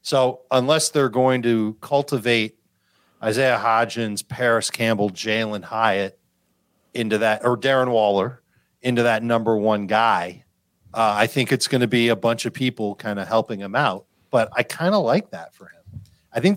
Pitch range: 115-135 Hz